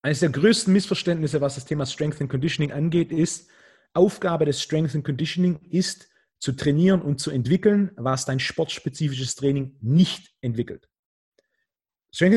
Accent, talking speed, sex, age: German, 145 wpm, male, 30-49